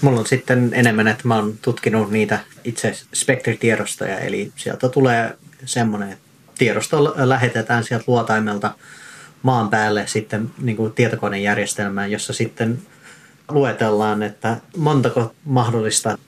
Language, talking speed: Finnish, 115 wpm